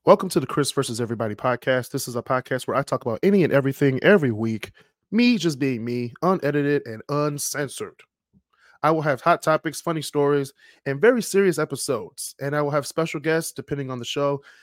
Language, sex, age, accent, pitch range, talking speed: English, male, 20-39, American, 115-145 Hz, 195 wpm